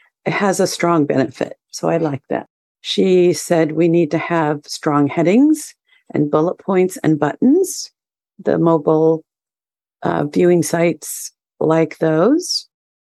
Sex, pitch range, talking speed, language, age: female, 160-215 Hz, 130 wpm, English, 50-69